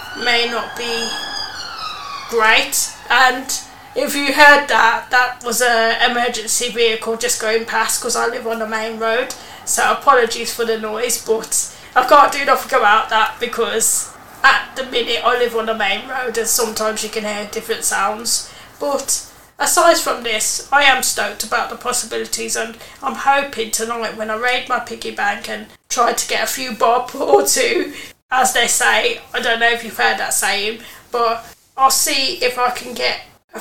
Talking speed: 180 wpm